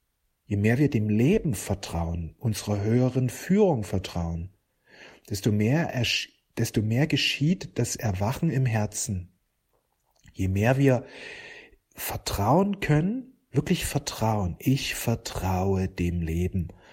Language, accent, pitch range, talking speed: German, German, 100-130 Hz, 110 wpm